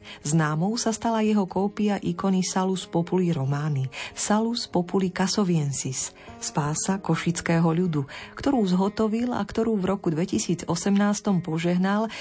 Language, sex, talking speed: Slovak, female, 115 wpm